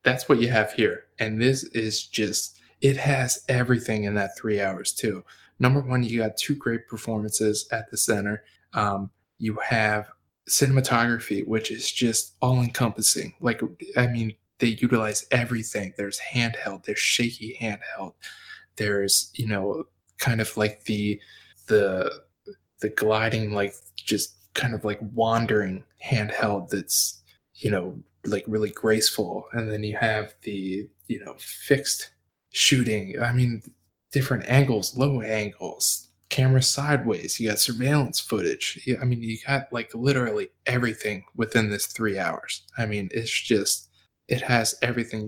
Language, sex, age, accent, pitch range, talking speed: English, male, 20-39, American, 105-125 Hz, 145 wpm